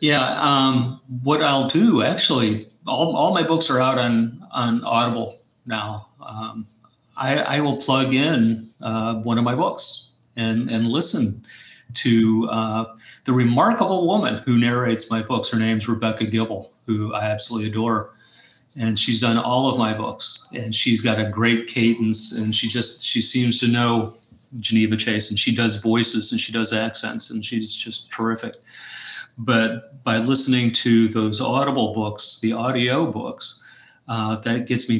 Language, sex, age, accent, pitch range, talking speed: English, male, 40-59, American, 110-125 Hz, 165 wpm